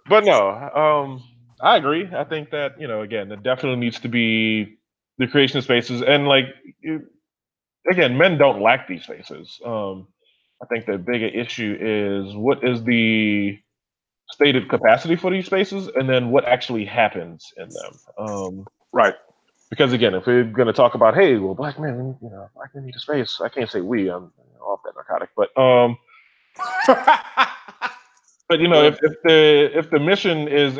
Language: English